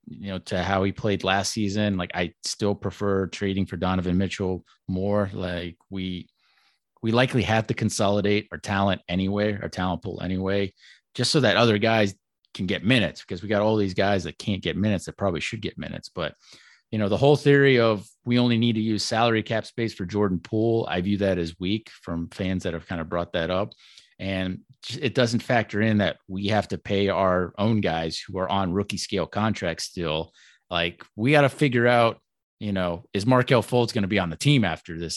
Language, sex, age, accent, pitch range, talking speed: English, male, 30-49, American, 90-110 Hz, 215 wpm